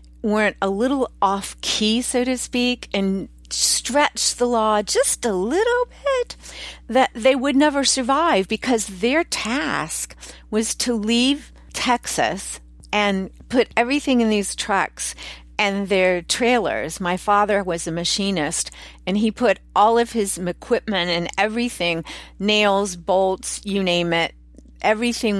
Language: English